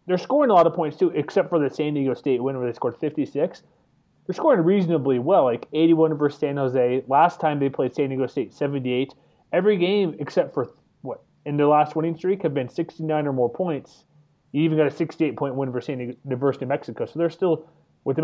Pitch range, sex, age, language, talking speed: 130-160 Hz, male, 30-49, English, 220 wpm